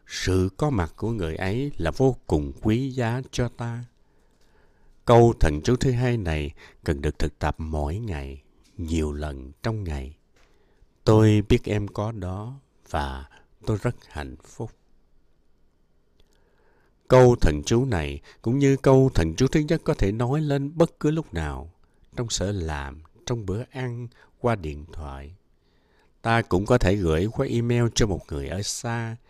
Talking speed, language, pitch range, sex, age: 160 wpm, English, 80-120 Hz, male, 60-79